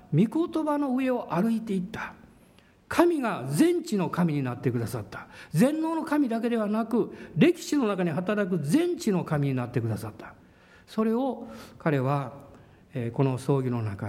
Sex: male